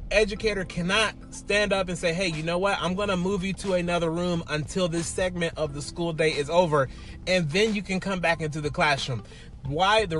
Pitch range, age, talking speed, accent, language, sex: 140-200 Hz, 30-49, 225 wpm, American, English, male